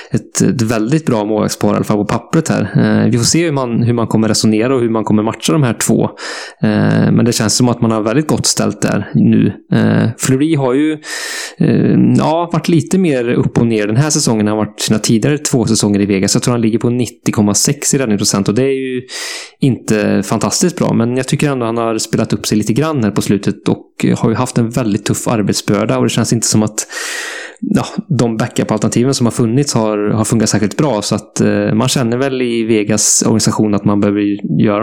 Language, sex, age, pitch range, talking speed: English, male, 20-39, 105-125 Hz, 220 wpm